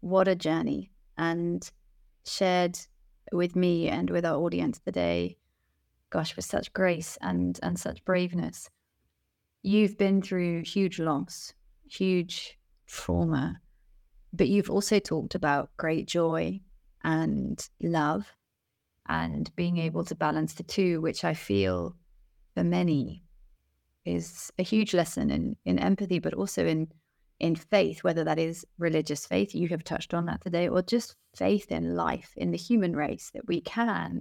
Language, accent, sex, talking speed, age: English, British, female, 145 wpm, 30-49